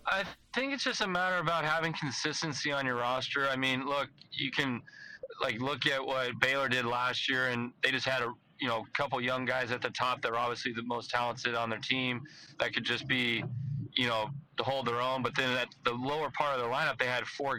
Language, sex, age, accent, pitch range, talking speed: English, male, 30-49, American, 120-140 Hz, 235 wpm